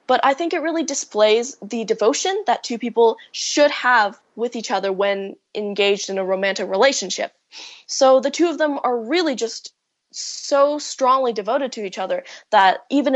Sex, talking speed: female, 175 wpm